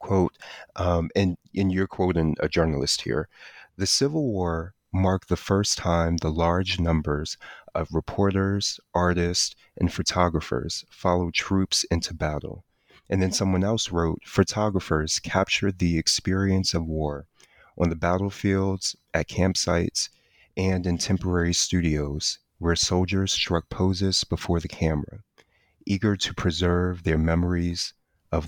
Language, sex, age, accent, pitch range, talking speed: English, male, 30-49, American, 85-110 Hz, 130 wpm